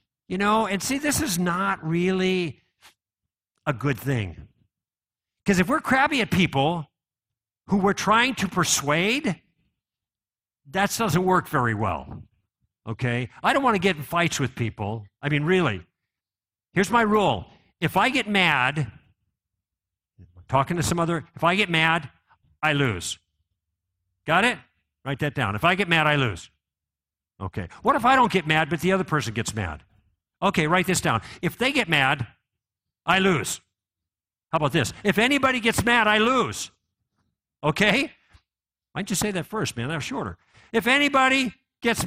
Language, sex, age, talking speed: English, male, 50-69, 160 wpm